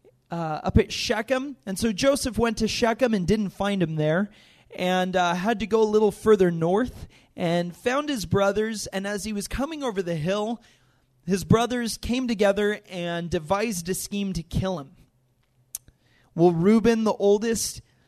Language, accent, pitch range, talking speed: English, American, 155-215 Hz, 170 wpm